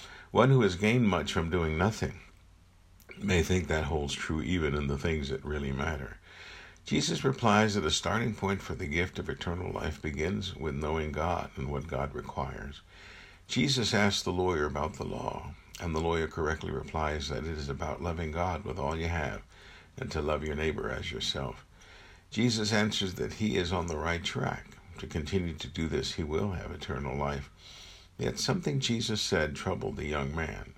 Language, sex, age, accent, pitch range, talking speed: English, male, 60-79, American, 75-100 Hz, 185 wpm